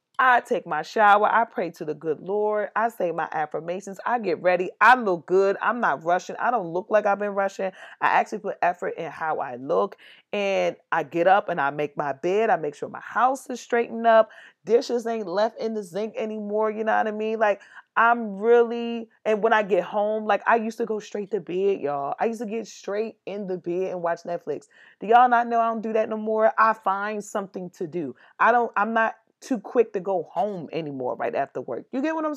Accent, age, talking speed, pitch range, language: American, 30-49, 235 wpm, 180-230 Hz, English